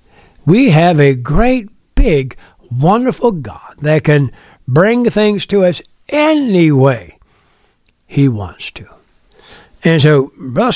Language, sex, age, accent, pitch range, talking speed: English, male, 60-79, American, 145-205 Hz, 115 wpm